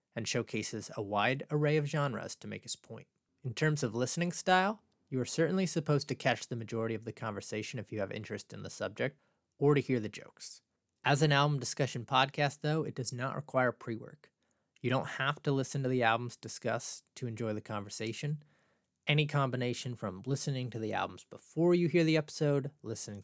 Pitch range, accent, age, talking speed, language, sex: 115-140 Hz, American, 30-49, 195 wpm, English, male